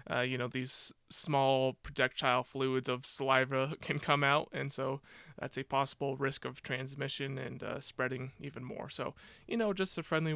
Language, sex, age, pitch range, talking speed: English, male, 20-39, 130-145 Hz, 180 wpm